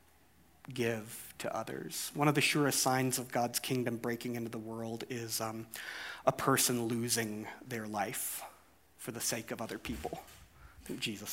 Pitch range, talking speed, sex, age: 110-140 Hz, 165 wpm, male, 30-49